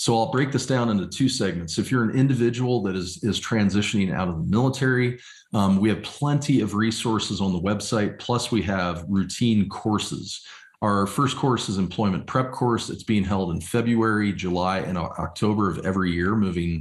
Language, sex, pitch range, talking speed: English, male, 95-115 Hz, 190 wpm